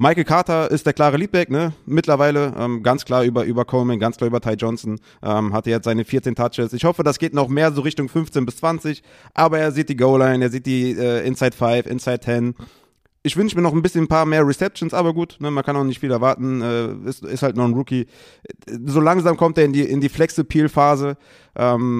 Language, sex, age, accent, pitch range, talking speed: German, male, 30-49, German, 120-150 Hz, 225 wpm